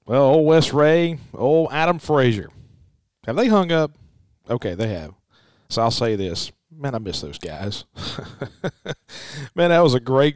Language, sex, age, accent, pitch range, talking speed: English, male, 40-59, American, 120-150 Hz, 160 wpm